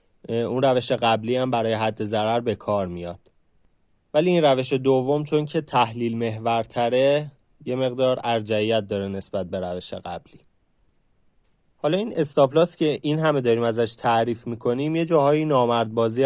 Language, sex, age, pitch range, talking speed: Persian, male, 30-49, 115-150 Hz, 150 wpm